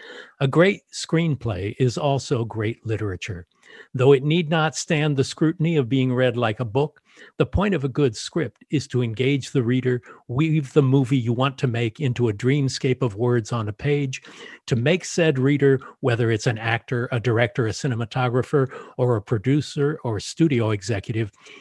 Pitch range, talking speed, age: 115-140 Hz, 180 wpm, 50-69